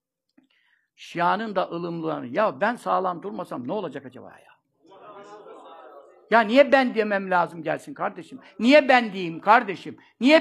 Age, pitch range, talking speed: 60-79, 180-280 Hz, 135 wpm